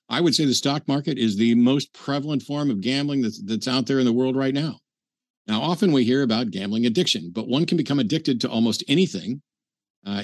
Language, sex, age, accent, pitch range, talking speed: English, male, 50-69, American, 115-160 Hz, 225 wpm